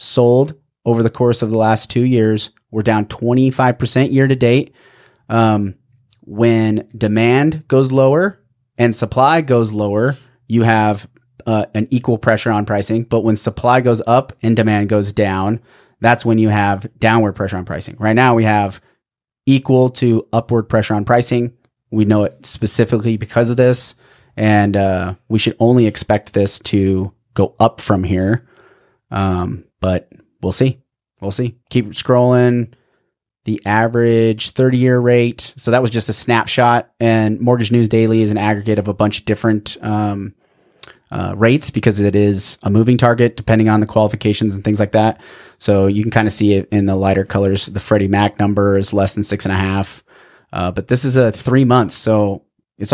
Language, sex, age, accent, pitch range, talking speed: English, male, 30-49, American, 105-120 Hz, 175 wpm